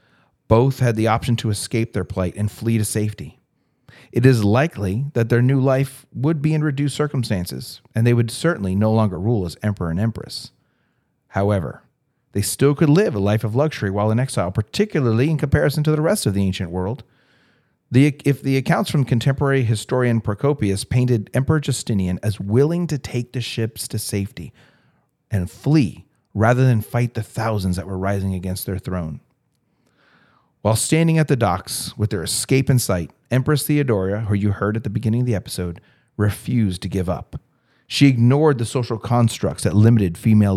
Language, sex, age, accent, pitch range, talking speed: English, male, 40-59, American, 100-130 Hz, 180 wpm